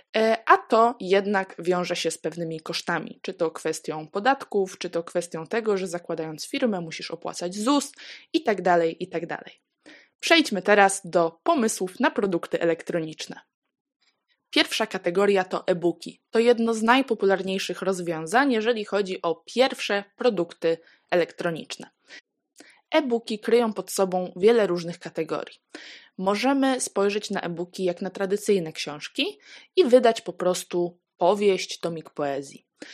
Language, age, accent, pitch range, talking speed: Polish, 20-39, native, 175-225 Hz, 125 wpm